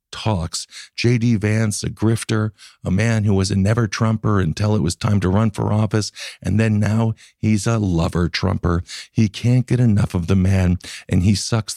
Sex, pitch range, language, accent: male, 95-110 Hz, English, American